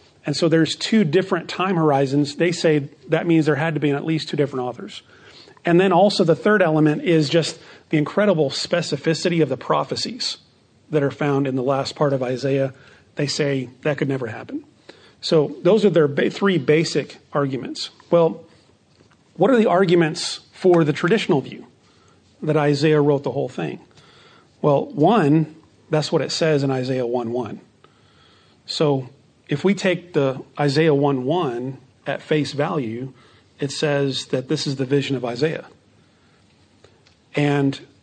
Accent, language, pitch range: American, English, 135-165 Hz